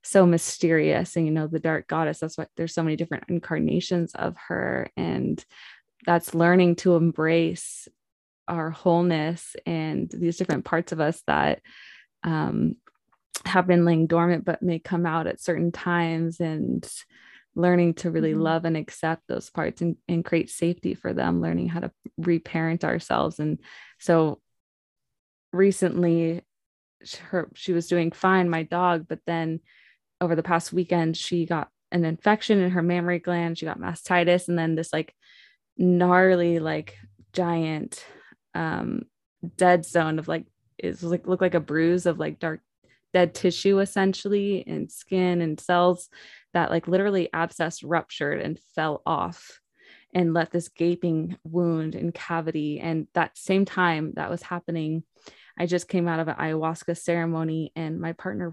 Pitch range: 160-180 Hz